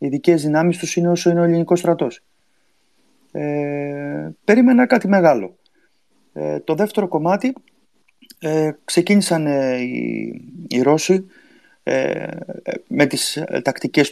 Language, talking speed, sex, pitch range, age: Greek, 115 wpm, male, 115-150 Hz, 30-49